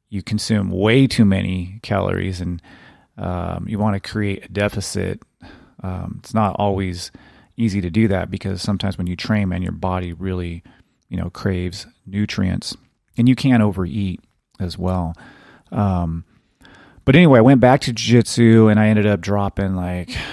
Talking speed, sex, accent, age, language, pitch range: 160 wpm, male, American, 30-49, English, 95-110 Hz